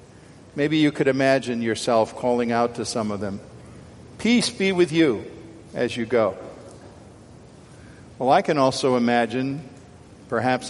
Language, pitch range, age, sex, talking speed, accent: English, 125-155 Hz, 50-69, male, 135 wpm, American